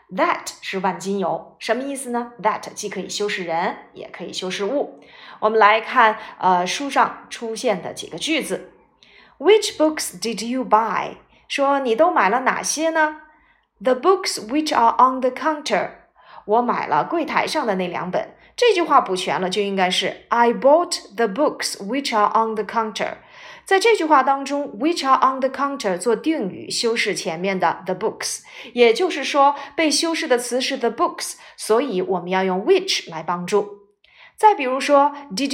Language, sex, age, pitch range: Chinese, female, 30-49, 210-310 Hz